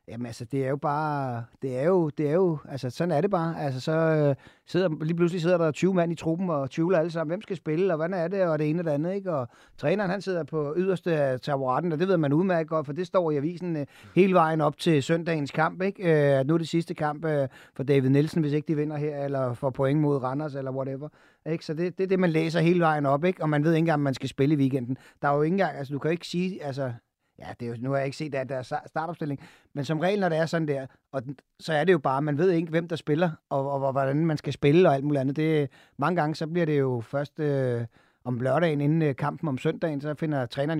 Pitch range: 135-165 Hz